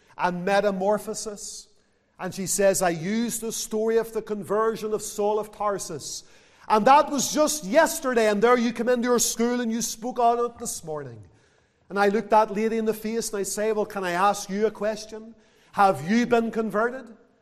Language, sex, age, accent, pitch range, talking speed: English, male, 40-59, Irish, 200-245 Hz, 195 wpm